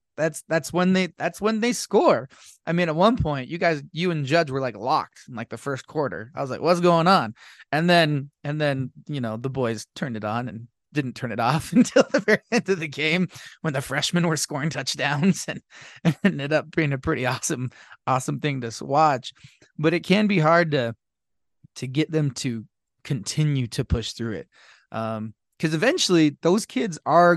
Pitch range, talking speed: 130-165 Hz, 205 wpm